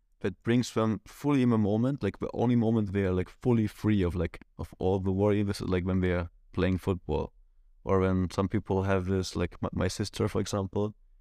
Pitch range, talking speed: 90-110 Hz, 220 wpm